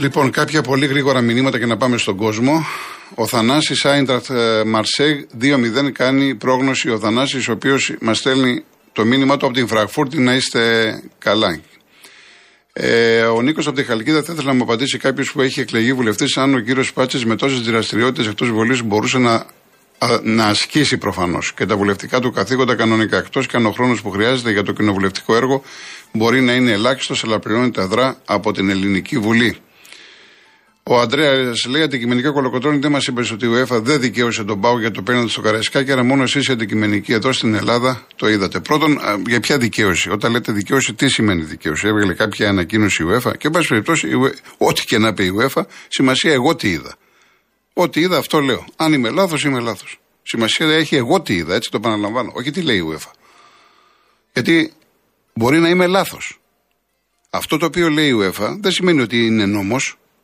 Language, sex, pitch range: Greek, male, 110-135 Hz